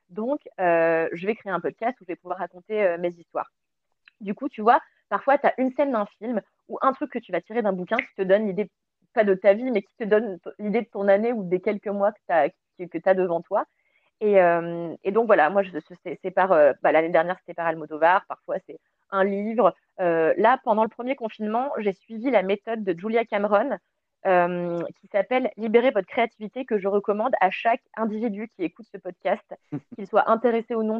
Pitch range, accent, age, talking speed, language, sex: 185-230 Hz, French, 30-49, 230 wpm, French, female